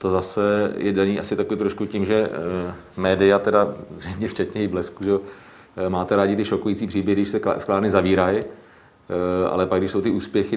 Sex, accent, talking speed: male, native, 170 wpm